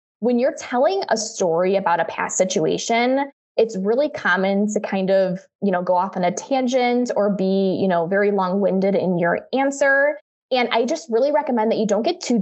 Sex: female